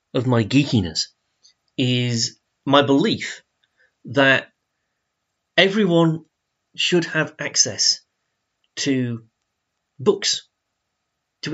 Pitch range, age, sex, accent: 120-165 Hz, 30-49, male, British